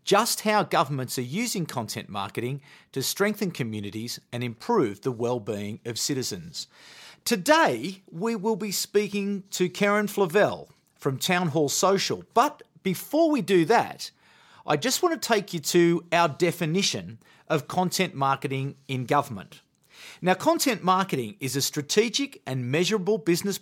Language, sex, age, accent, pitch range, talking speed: English, male, 40-59, Australian, 135-210 Hz, 140 wpm